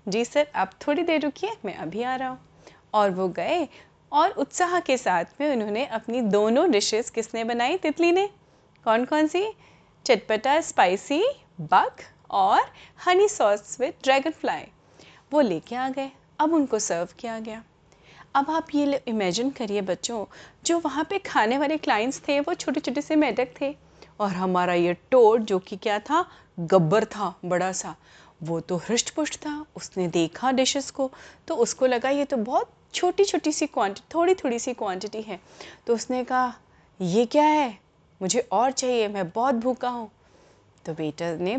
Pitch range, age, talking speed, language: 200-290 Hz, 30-49, 170 wpm, Hindi